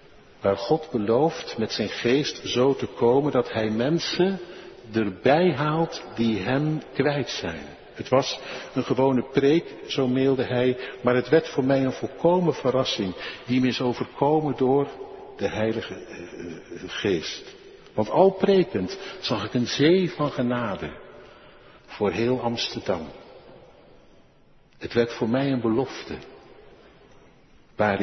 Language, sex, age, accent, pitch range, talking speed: Dutch, male, 60-79, Dutch, 115-160 Hz, 135 wpm